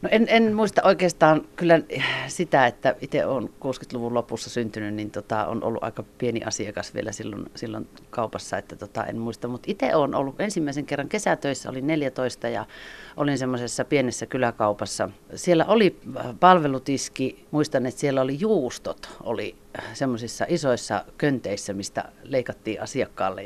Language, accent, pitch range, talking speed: Finnish, native, 125-165 Hz, 145 wpm